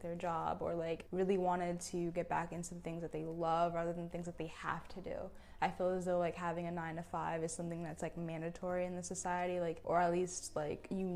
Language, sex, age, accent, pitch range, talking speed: English, female, 10-29, American, 175-195 Hz, 255 wpm